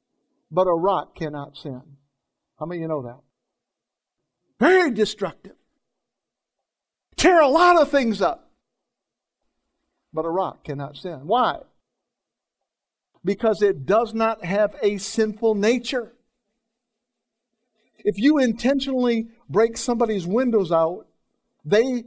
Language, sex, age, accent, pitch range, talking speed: English, male, 50-69, American, 185-240 Hz, 110 wpm